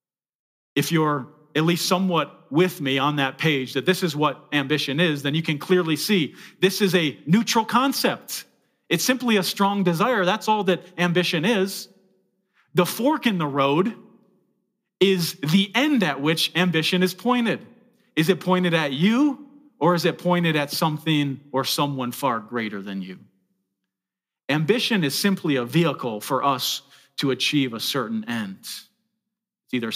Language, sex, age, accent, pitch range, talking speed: English, male, 40-59, American, 145-185 Hz, 160 wpm